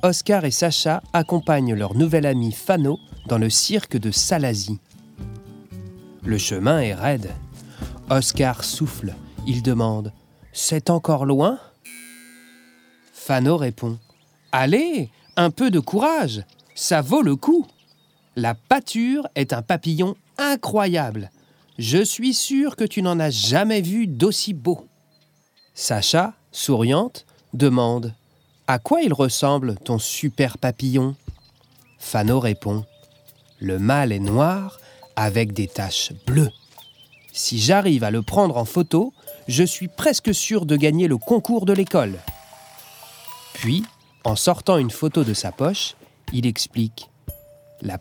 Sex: male